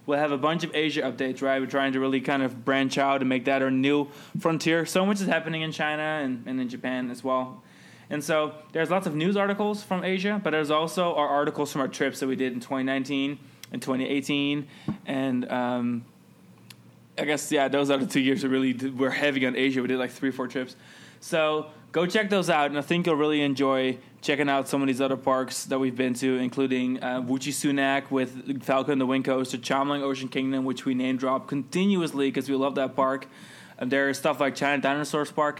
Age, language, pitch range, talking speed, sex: 20-39, English, 130-150 Hz, 225 wpm, male